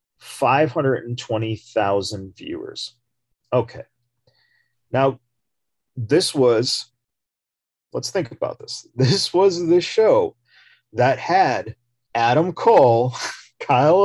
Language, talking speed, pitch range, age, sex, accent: English, 80 wpm, 115-145 Hz, 40-59, male, American